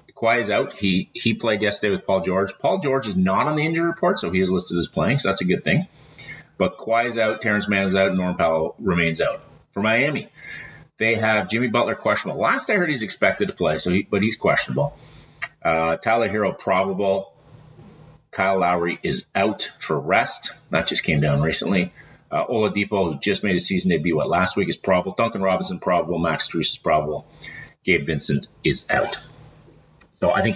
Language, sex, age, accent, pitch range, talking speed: English, male, 30-49, American, 90-120 Hz, 200 wpm